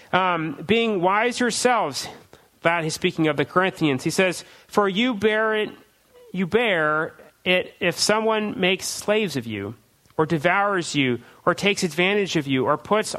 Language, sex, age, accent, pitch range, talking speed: English, male, 40-59, American, 160-215 Hz, 160 wpm